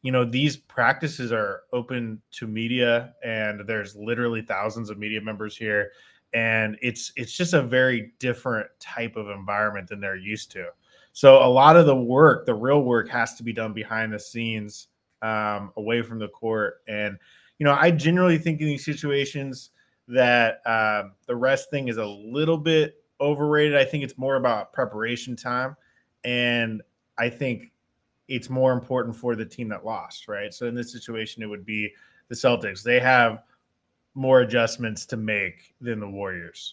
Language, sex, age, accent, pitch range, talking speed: English, male, 20-39, American, 110-135 Hz, 175 wpm